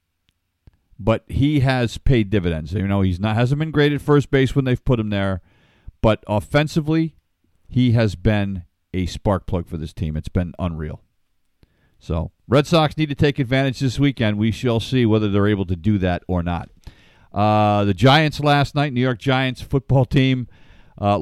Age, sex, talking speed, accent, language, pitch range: 50-69, male, 180 wpm, American, English, 100-140 Hz